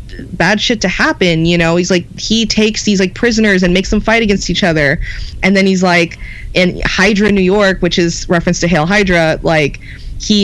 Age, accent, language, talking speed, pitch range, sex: 20-39, American, English, 205 wpm, 160-195 Hz, female